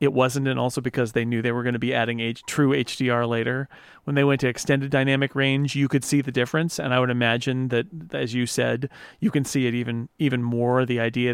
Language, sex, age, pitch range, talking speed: English, male, 40-59, 120-135 Hz, 245 wpm